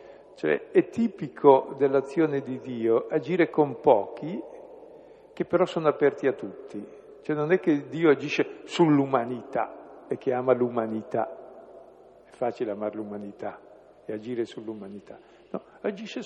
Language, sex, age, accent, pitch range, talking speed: Italian, male, 60-79, native, 125-205 Hz, 130 wpm